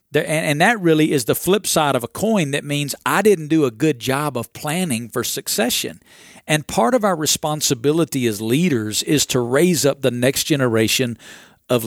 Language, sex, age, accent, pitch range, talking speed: English, male, 50-69, American, 130-165 Hz, 185 wpm